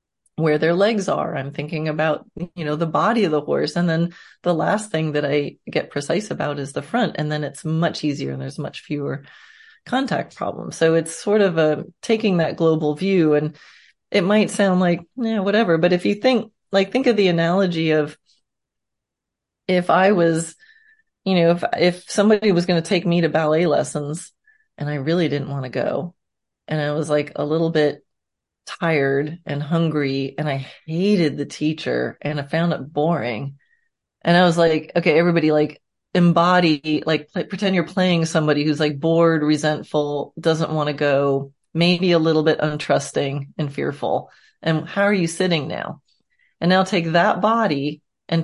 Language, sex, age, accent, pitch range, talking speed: English, female, 30-49, American, 150-180 Hz, 180 wpm